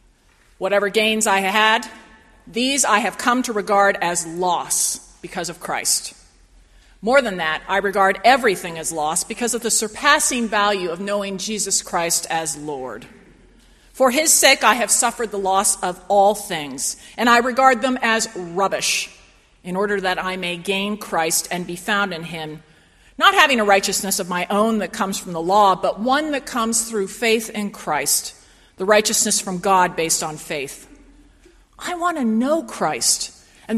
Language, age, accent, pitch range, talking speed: English, 40-59, American, 180-230 Hz, 170 wpm